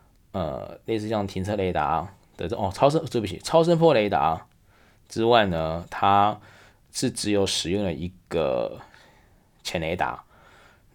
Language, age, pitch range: Chinese, 20-39, 90-110 Hz